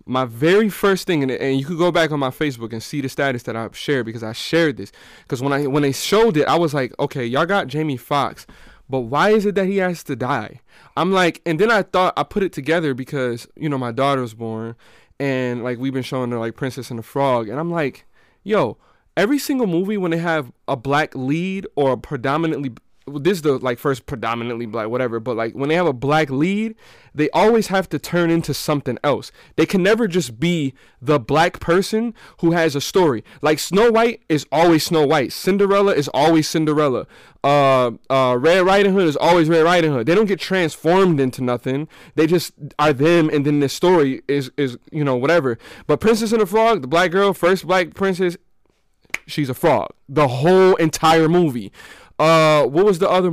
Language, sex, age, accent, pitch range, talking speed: English, male, 20-39, American, 135-185 Hz, 215 wpm